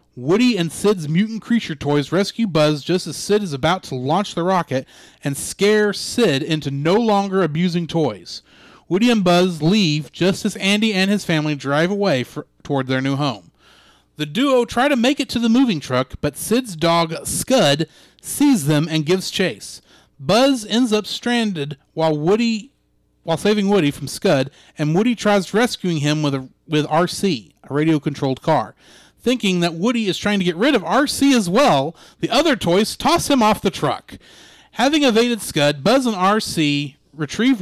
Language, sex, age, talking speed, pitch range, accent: English, male, 30-49, 175 wpm, 150-215 Hz, American